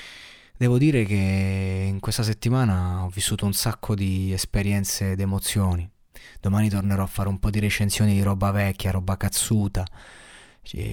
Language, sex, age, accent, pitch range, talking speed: Italian, male, 20-39, native, 95-110 Hz, 155 wpm